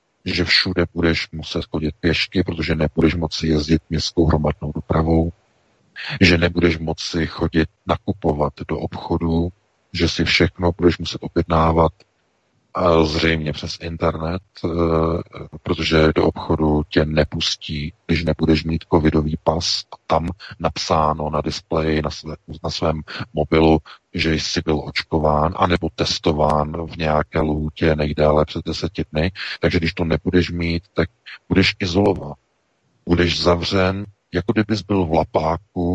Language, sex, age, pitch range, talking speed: Czech, male, 40-59, 80-90 Hz, 130 wpm